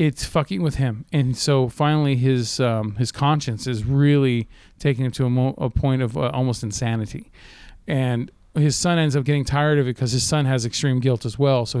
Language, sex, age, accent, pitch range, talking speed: English, male, 40-59, American, 120-145 Hz, 210 wpm